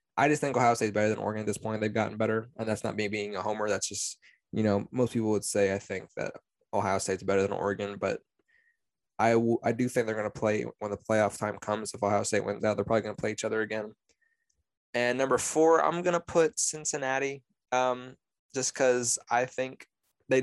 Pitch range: 105-125 Hz